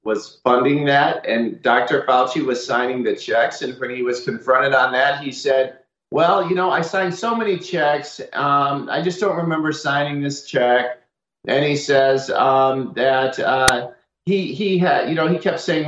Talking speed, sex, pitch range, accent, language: 185 wpm, male, 130-160 Hz, American, English